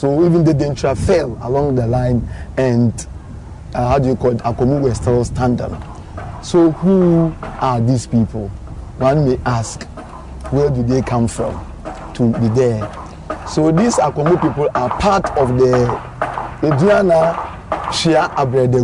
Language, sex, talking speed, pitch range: English, male, 145 wpm, 125-155 Hz